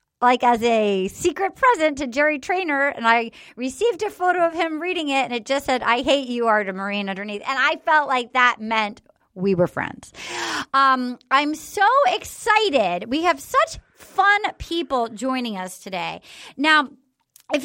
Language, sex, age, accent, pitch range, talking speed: English, female, 30-49, American, 240-335 Hz, 170 wpm